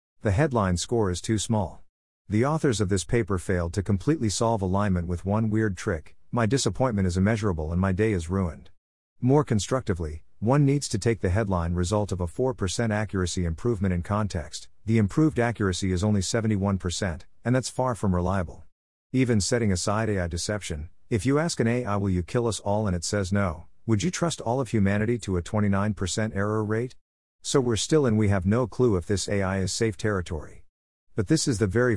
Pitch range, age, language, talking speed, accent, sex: 90-115 Hz, 50-69, English, 195 wpm, American, male